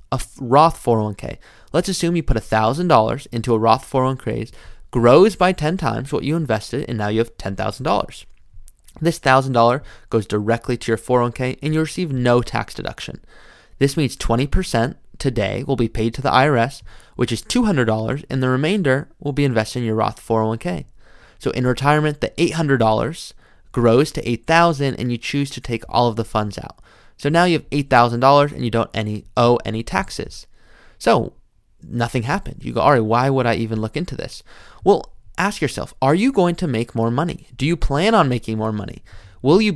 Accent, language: American, English